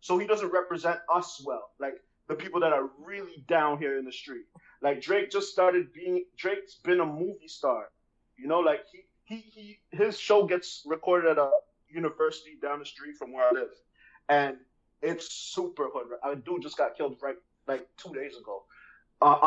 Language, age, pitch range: English, 30-49, 140-185 Hz